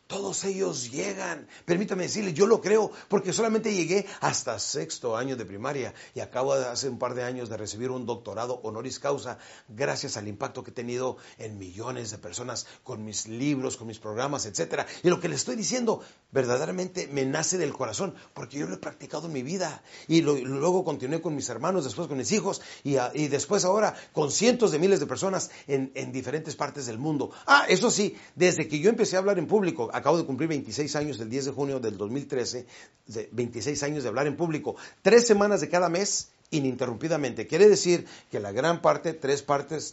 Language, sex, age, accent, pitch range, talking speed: Spanish, male, 40-59, Mexican, 115-155 Hz, 205 wpm